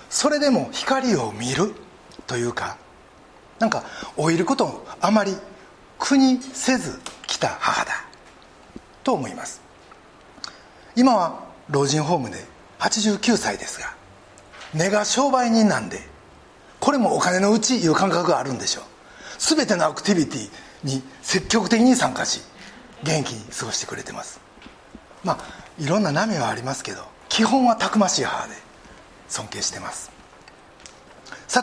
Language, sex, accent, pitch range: Japanese, male, native, 180-255 Hz